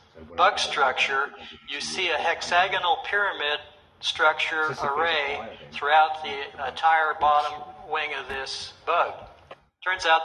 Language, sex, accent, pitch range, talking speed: English, male, American, 145-170 Hz, 110 wpm